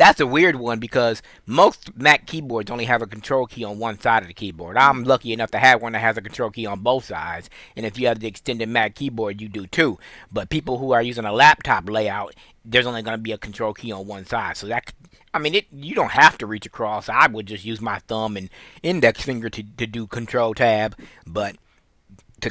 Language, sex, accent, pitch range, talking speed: English, male, American, 110-130 Hz, 240 wpm